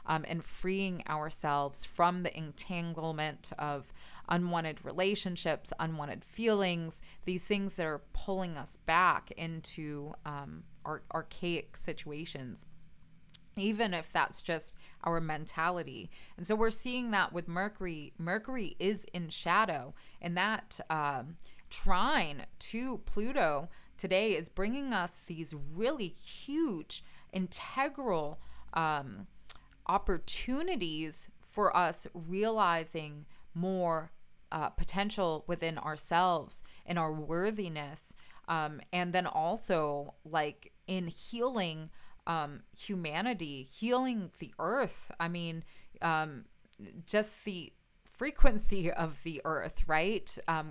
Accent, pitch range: American, 155-195 Hz